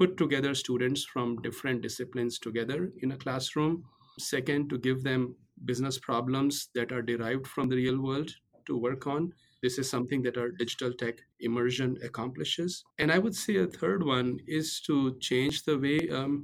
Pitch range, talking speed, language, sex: 125-150 Hz, 175 wpm, English, male